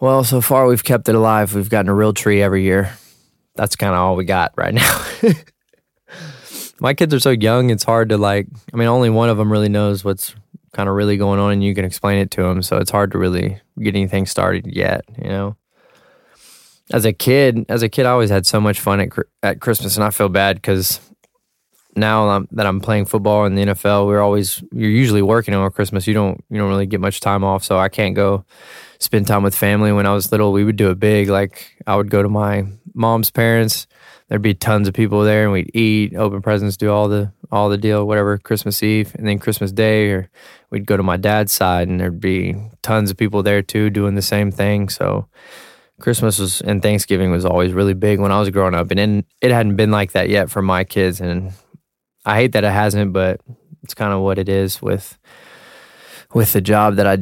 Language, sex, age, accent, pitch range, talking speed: English, male, 20-39, American, 100-110 Hz, 230 wpm